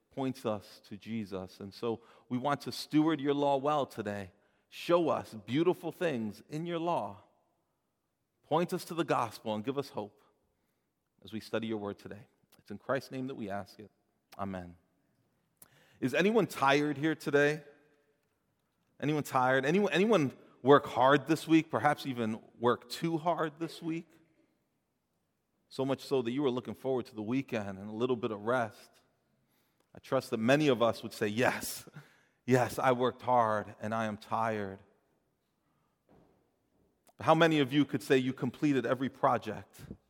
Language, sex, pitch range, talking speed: English, male, 110-155 Hz, 165 wpm